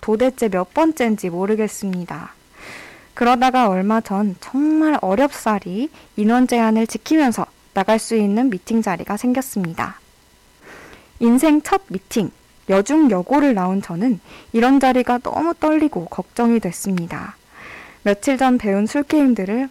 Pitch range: 200-275 Hz